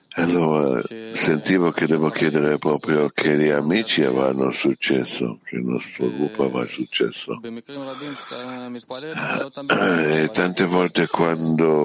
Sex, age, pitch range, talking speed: male, 60-79, 70-85 Hz, 105 wpm